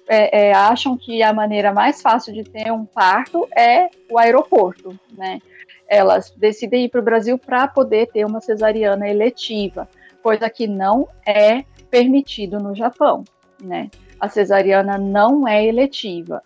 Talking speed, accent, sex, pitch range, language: 140 wpm, Brazilian, female, 205-250 Hz, Portuguese